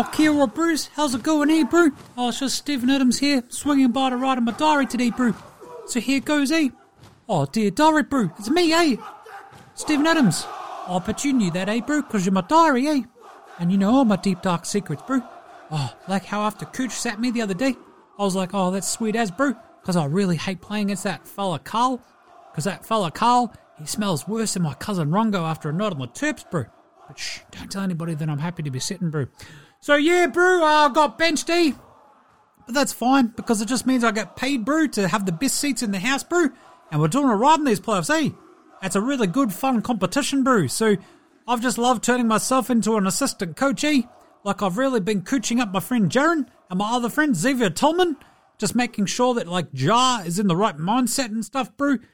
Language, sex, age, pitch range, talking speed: English, male, 30-49, 200-280 Hz, 230 wpm